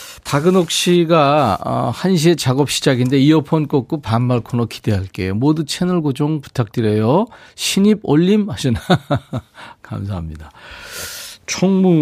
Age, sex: 40-59, male